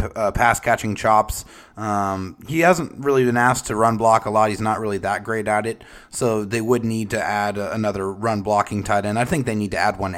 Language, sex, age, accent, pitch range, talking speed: English, male, 30-49, American, 105-125 Hz, 235 wpm